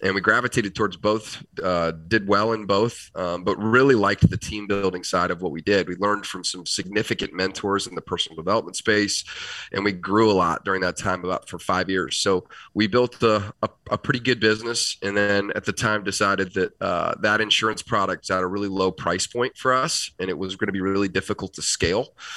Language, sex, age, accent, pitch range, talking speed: English, male, 30-49, American, 95-110 Hz, 225 wpm